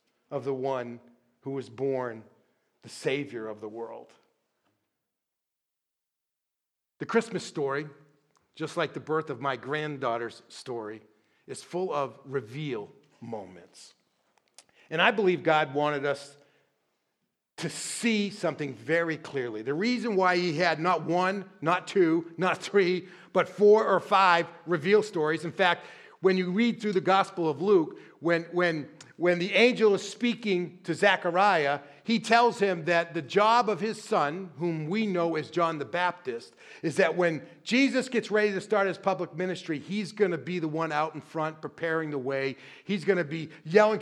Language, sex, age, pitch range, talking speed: English, male, 40-59, 145-195 Hz, 160 wpm